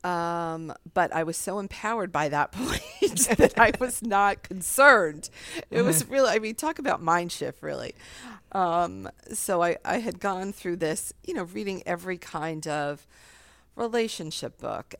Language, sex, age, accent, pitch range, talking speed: English, female, 40-59, American, 140-175 Hz, 160 wpm